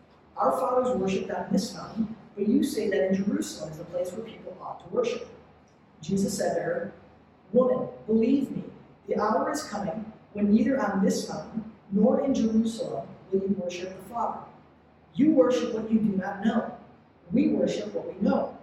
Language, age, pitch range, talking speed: English, 40-59, 175-230 Hz, 180 wpm